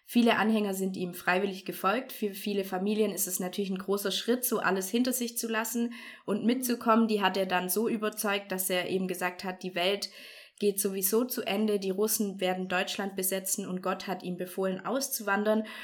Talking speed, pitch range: 195 wpm, 180-215 Hz